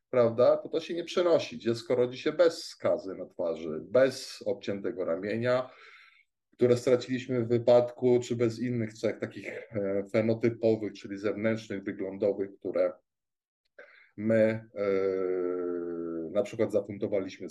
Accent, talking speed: native, 120 wpm